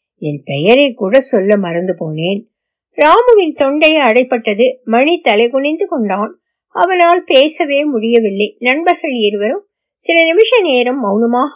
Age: 60-79